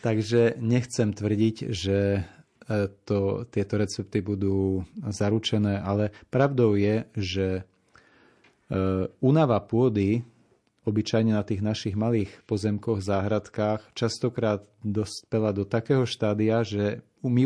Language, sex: Slovak, male